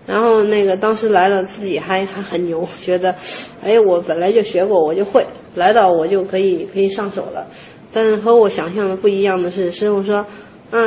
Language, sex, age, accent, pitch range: Chinese, female, 20-39, native, 185-230 Hz